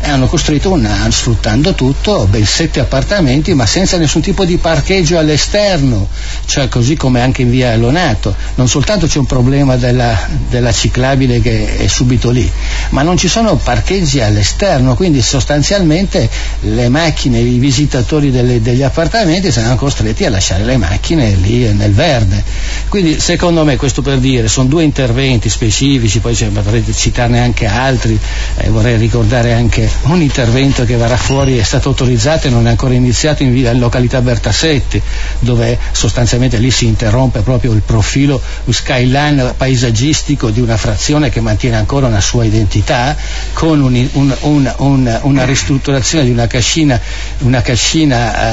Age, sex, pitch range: 60-79, male, 115-145 Hz